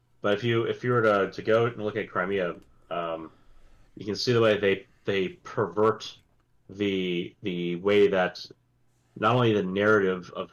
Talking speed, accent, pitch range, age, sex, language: 175 wpm, American, 90-120 Hz, 30-49, male, English